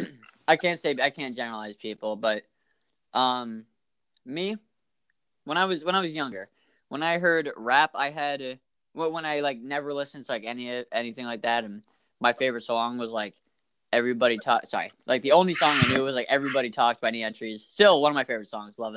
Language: English